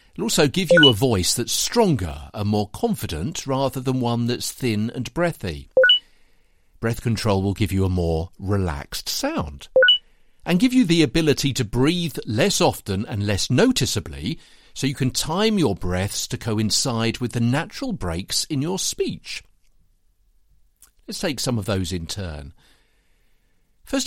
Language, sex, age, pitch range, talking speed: English, male, 50-69, 95-130 Hz, 155 wpm